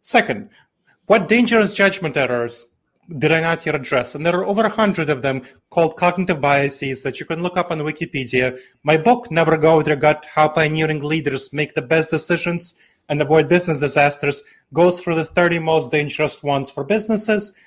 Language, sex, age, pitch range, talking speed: English, male, 30-49, 140-195 Hz, 185 wpm